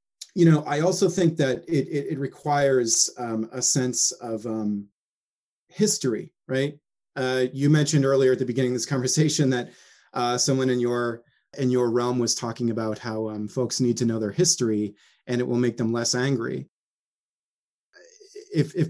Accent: American